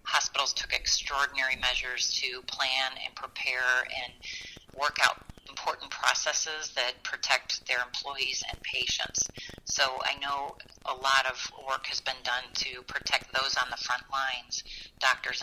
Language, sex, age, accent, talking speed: English, female, 40-59, American, 145 wpm